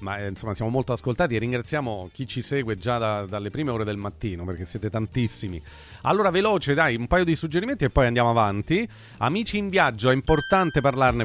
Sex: male